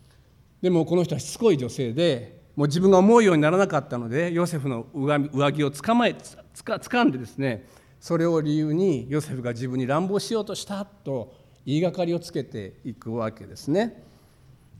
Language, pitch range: Japanese, 125-170 Hz